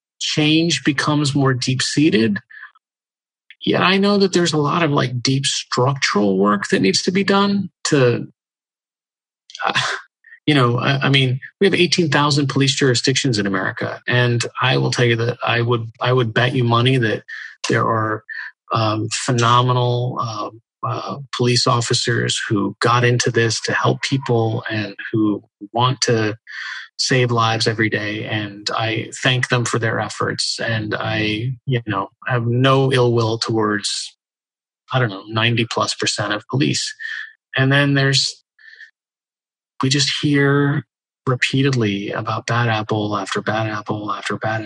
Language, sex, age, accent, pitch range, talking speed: English, male, 30-49, American, 110-135 Hz, 155 wpm